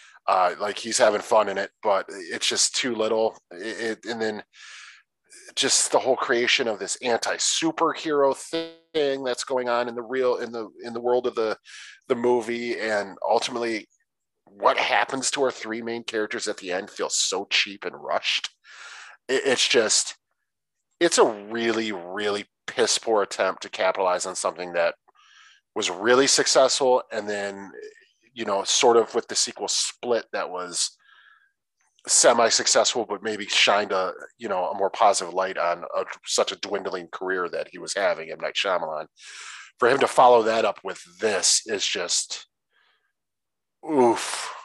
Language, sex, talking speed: English, male, 165 wpm